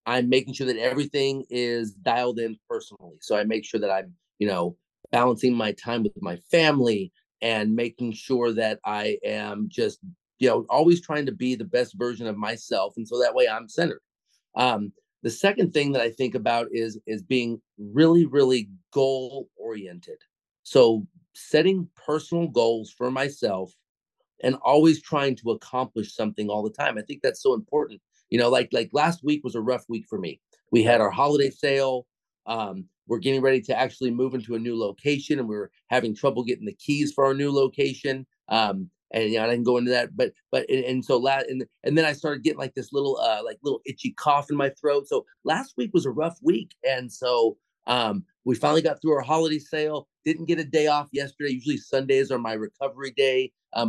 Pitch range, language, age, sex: 120-150 Hz, English, 30-49, male